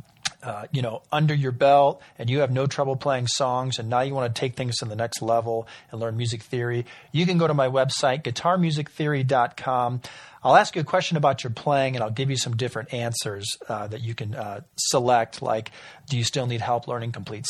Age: 40-59